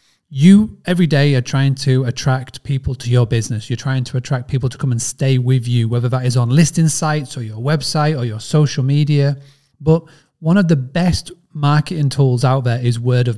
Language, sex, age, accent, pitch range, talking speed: English, male, 30-49, British, 130-155 Hz, 210 wpm